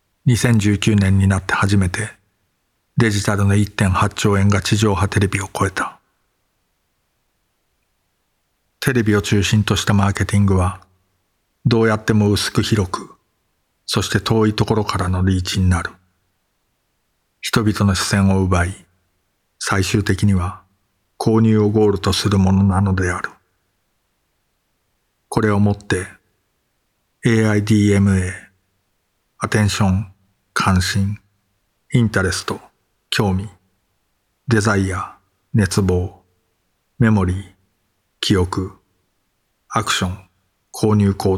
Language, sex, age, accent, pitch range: Japanese, male, 50-69, native, 95-105 Hz